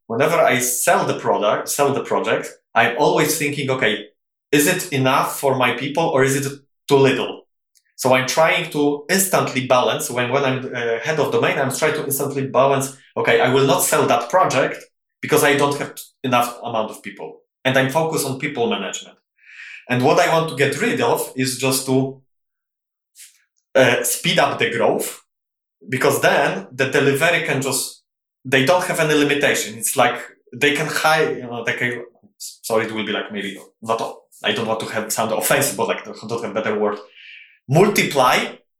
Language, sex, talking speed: English, male, 185 wpm